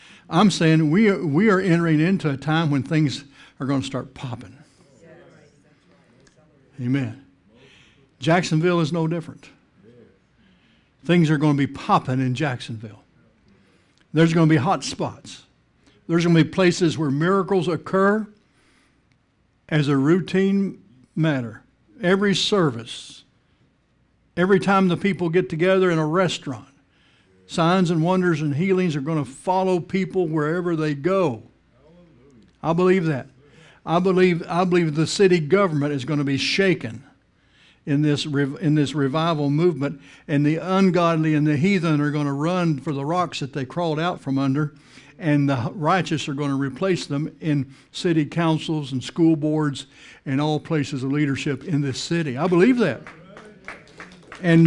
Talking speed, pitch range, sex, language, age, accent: 155 wpm, 140-180 Hz, male, English, 60-79, American